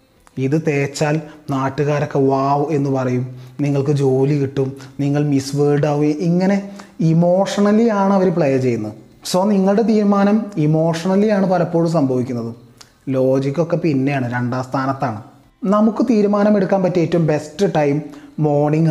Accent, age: native, 30-49